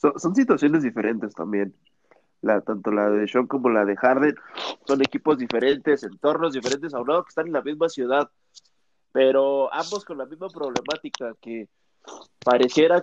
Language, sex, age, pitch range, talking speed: Spanish, male, 20-39, 120-150 Hz, 160 wpm